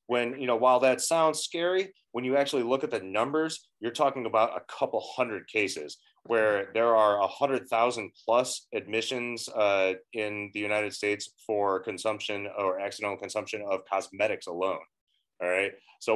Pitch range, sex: 100-145 Hz, male